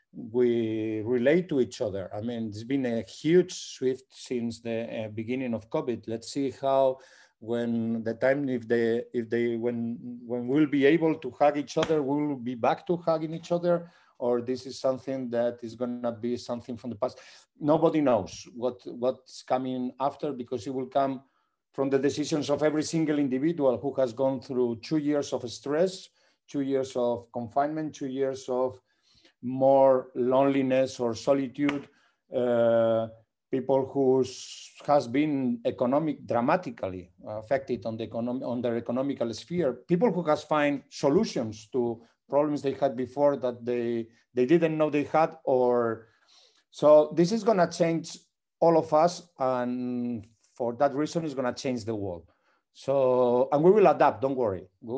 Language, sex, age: English, male, 50-69